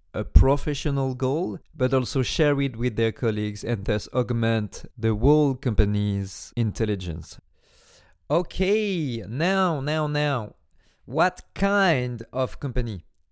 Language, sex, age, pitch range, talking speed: French, male, 40-59, 120-160 Hz, 115 wpm